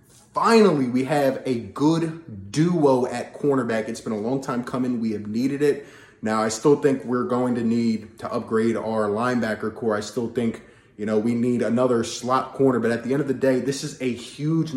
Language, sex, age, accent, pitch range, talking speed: English, male, 20-39, American, 115-135 Hz, 210 wpm